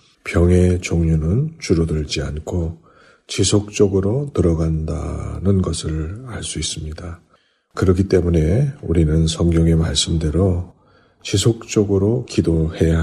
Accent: native